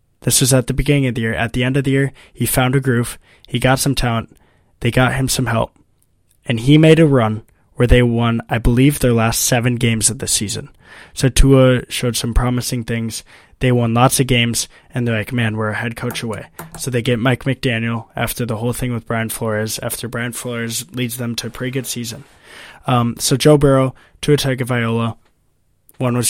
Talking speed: 215 wpm